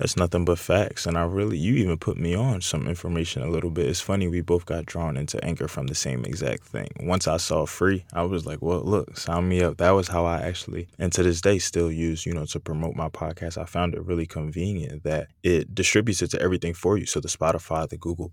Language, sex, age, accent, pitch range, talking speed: English, male, 20-39, American, 80-90 Hz, 250 wpm